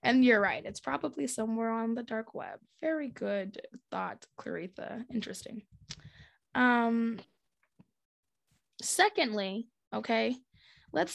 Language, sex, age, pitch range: English, female, 20-39, 205-255 Hz